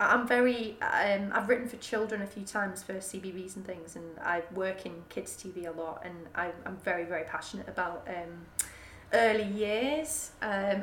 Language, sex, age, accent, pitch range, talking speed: English, female, 20-39, British, 190-225 Hz, 185 wpm